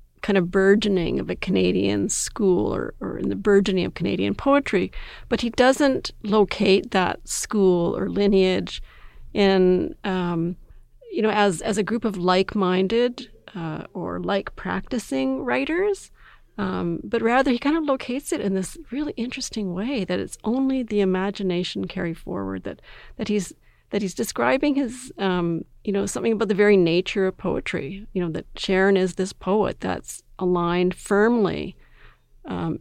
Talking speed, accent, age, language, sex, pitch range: 155 wpm, American, 40-59, English, female, 180-225 Hz